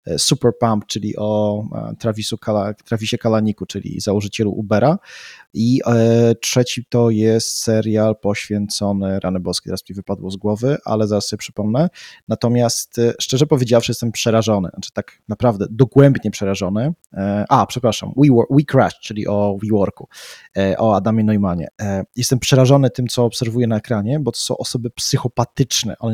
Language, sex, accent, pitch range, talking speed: Polish, male, native, 105-125 Hz, 135 wpm